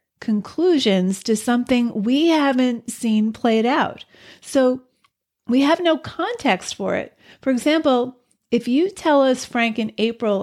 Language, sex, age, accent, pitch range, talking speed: English, female, 40-59, American, 215-270 Hz, 140 wpm